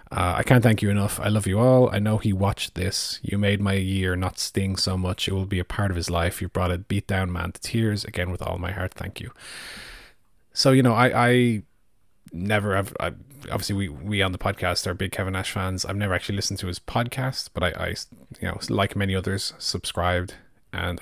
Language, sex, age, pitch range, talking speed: English, male, 30-49, 90-110 Hz, 230 wpm